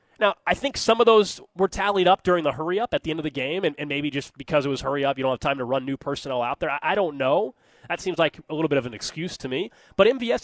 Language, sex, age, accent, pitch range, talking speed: English, male, 20-39, American, 135-165 Hz, 305 wpm